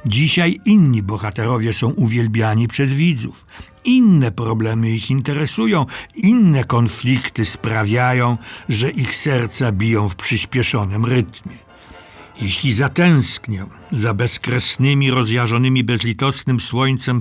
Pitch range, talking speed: 110-140 Hz, 100 wpm